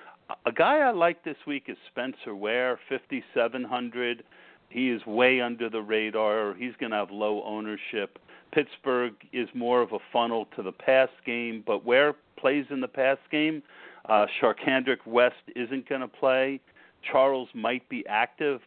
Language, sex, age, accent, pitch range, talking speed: English, male, 50-69, American, 110-130 Hz, 160 wpm